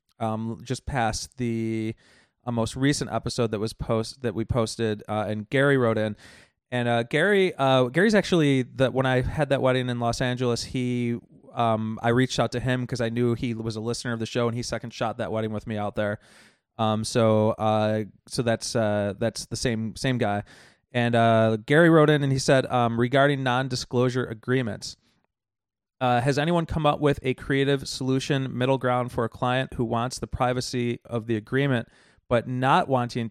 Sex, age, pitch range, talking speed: male, 30-49, 115-135 Hz, 195 wpm